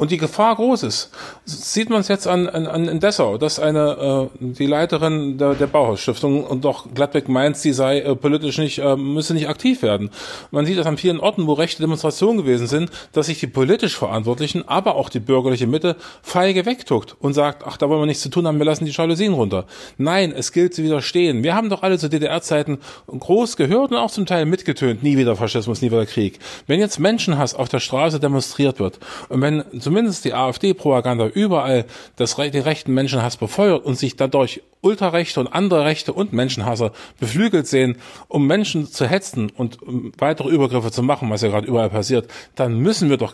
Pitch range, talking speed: 130-175 Hz, 210 wpm